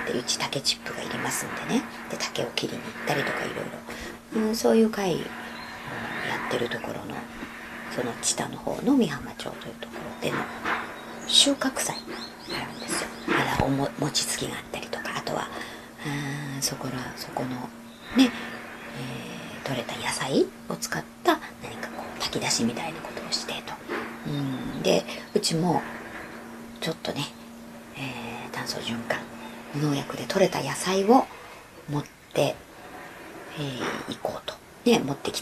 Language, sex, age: Japanese, male, 40-59